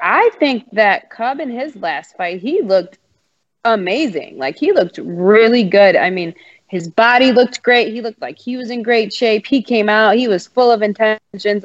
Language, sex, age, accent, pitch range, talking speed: English, female, 20-39, American, 195-240 Hz, 195 wpm